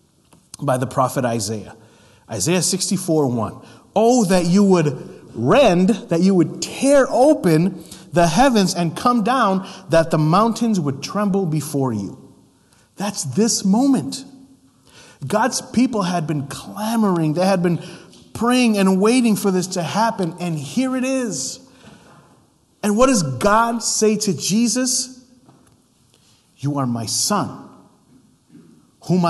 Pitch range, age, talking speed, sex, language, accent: 135-200 Hz, 30-49, 125 wpm, male, English, American